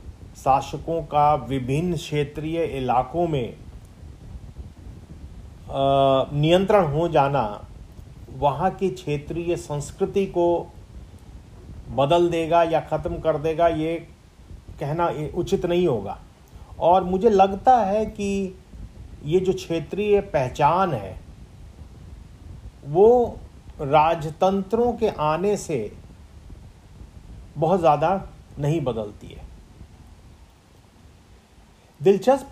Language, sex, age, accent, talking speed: English, male, 40-59, Indian, 85 wpm